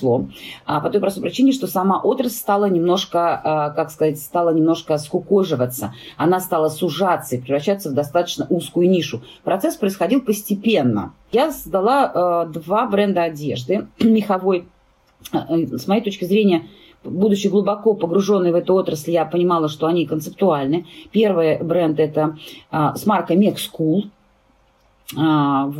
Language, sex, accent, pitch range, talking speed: Russian, female, native, 155-200 Hz, 130 wpm